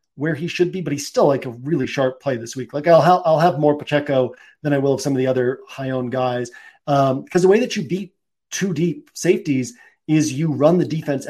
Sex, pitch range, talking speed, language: male, 130-155 Hz, 250 wpm, English